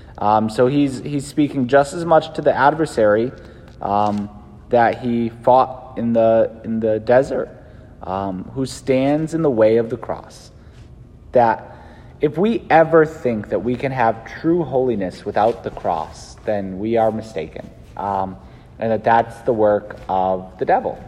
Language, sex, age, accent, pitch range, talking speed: English, male, 30-49, American, 110-145 Hz, 160 wpm